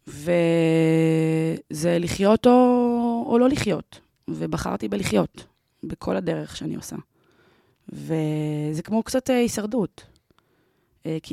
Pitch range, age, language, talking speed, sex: 165-205 Hz, 20-39, Hebrew, 90 wpm, female